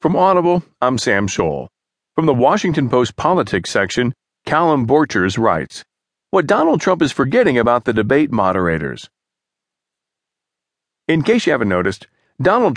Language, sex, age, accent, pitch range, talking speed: English, male, 40-59, American, 110-140 Hz, 135 wpm